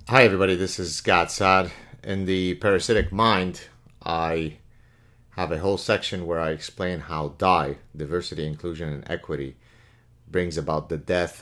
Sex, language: male, English